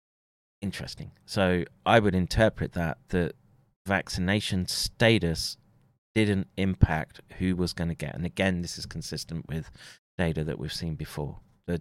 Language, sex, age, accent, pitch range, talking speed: English, male, 30-49, British, 80-100 Hz, 140 wpm